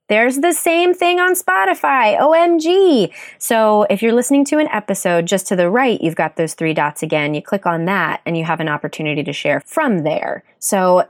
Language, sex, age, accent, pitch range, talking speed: English, female, 20-39, American, 170-230 Hz, 205 wpm